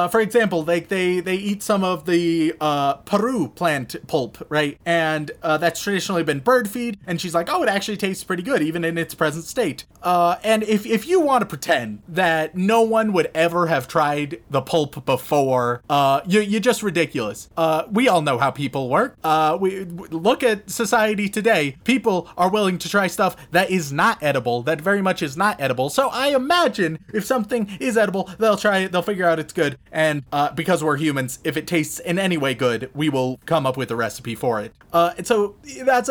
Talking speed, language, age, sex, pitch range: 215 wpm, English, 30-49, male, 160-220 Hz